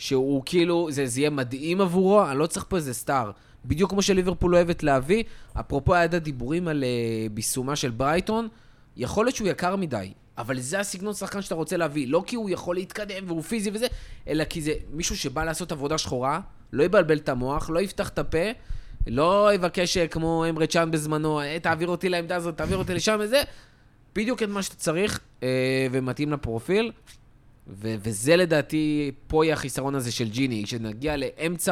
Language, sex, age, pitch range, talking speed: Hebrew, male, 20-39, 130-175 Hz, 180 wpm